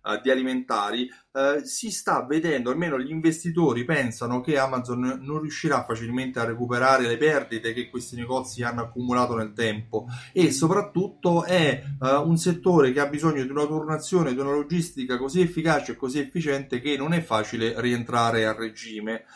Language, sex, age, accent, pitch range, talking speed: Italian, male, 30-49, native, 115-150 Hz, 165 wpm